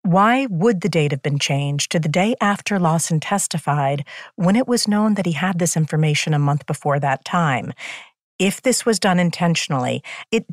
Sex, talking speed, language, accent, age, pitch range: female, 190 wpm, English, American, 50-69, 150-195 Hz